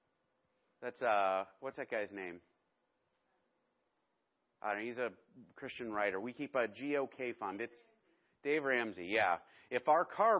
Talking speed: 135 wpm